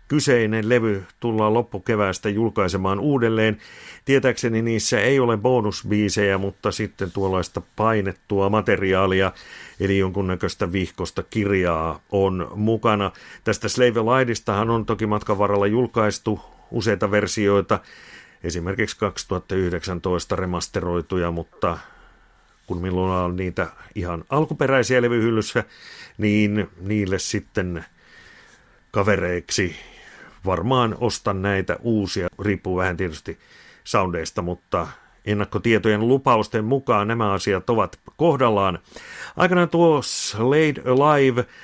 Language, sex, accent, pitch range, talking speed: Finnish, male, native, 95-115 Hz, 95 wpm